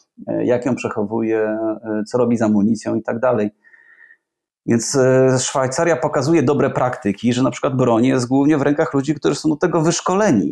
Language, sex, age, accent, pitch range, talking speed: Polish, male, 30-49, native, 115-145 Hz, 165 wpm